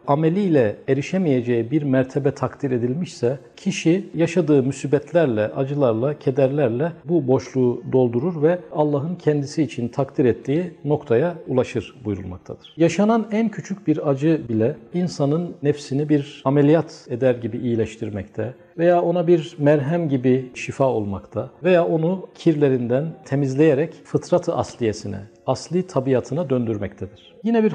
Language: Turkish